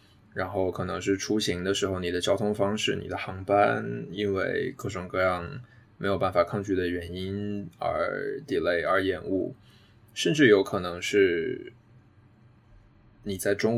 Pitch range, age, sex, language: 100-125 Hz, 20-39, male, Chinese